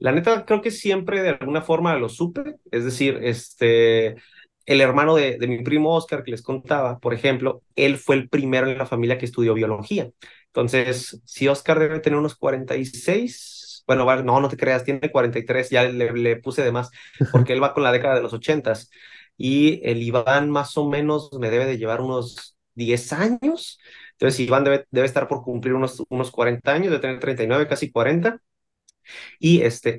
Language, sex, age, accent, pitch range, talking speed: Spanish, male, 30-49, Mexican, 120-150 Hz, 190 wpm